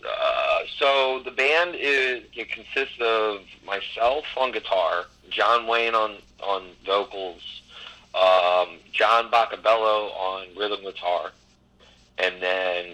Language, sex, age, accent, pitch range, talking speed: English, male, 40-59, American, 85-110 Hz, 110 wpm